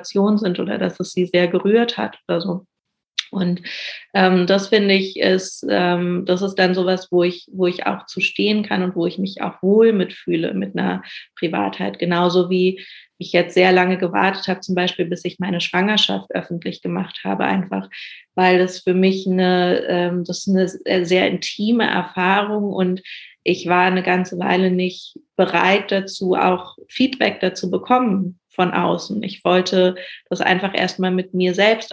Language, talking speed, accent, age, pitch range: German, 165 wpm, German, 30-49, 180-195 Hz